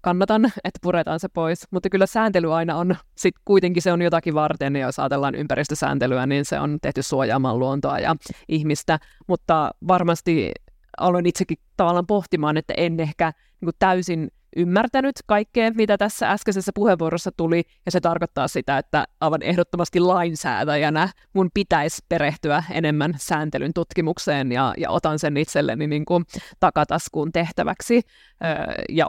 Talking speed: 140 wpm